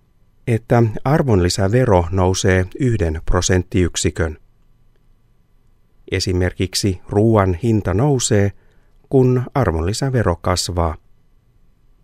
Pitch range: 90-120 Hz